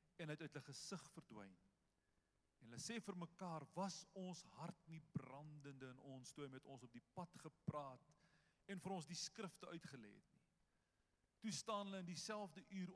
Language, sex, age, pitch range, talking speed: English, male, 50-69, 125-180 Hz, 165 wpm